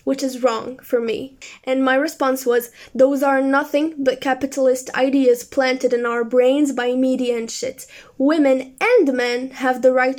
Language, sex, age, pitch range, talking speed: English, female, 10-29, 250-295 Hz, 170 wpm